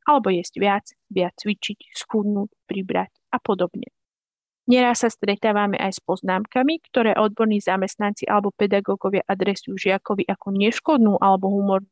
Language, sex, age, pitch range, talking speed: Slovak, female, 30-49, 195-235 Hz, 130 wpm